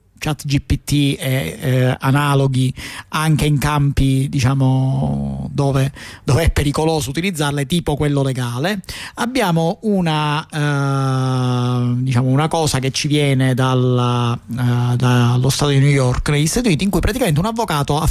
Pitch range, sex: 130-160 Hz, male